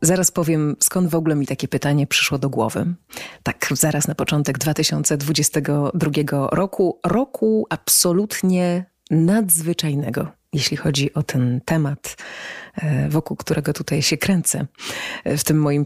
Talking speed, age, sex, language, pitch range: 125 wpm, 30-49, female, Polish, 145-170 Hz